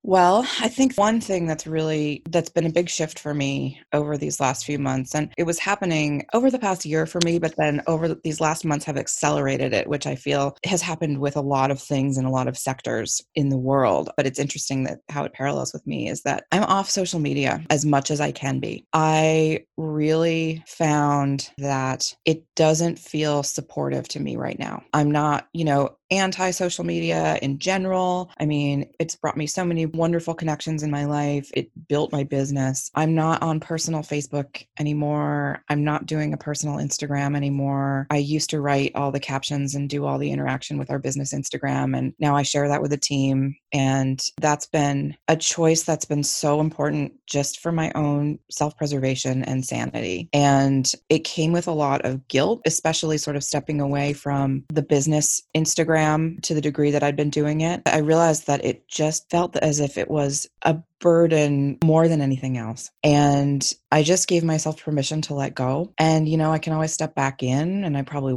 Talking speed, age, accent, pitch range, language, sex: 200 wpm, 20-39, American, 140-160 Hz, English, female